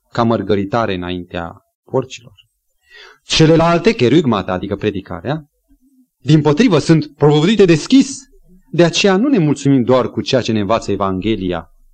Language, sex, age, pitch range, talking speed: Romanian, male, 30-49, 110-170 Hz, 125 wpm